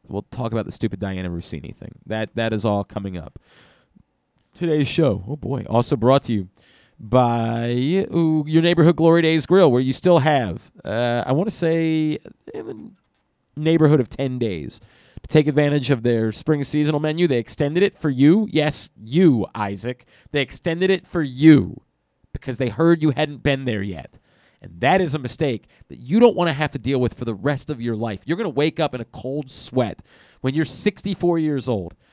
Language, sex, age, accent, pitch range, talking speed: English, male, 30-49, American, 120-160 Hz, 195 wpm